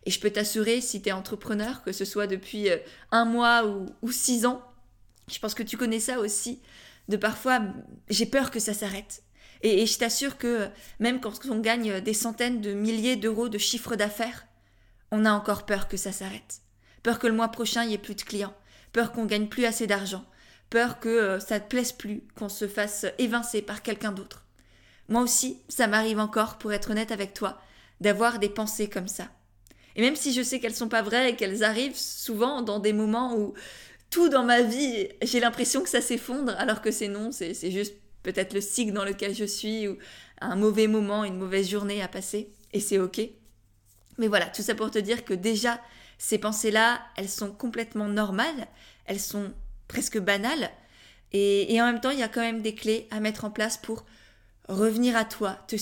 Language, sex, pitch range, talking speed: French, female, 205-235 Hz, 210 wpm